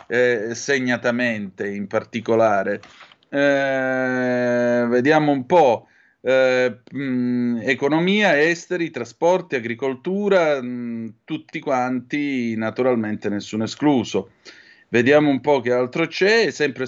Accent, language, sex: native, Italian, male